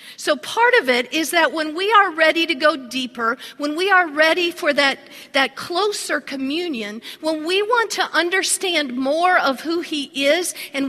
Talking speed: 180 wpm